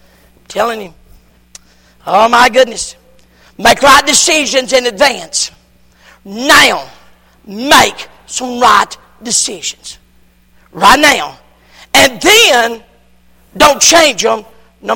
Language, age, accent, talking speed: English, 50-69, American, 90 wpm